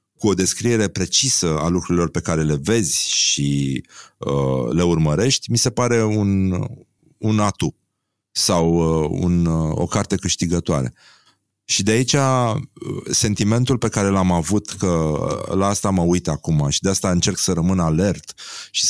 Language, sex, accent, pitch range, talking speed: Romanian, male, native, 85-110 Hz, 160 wpm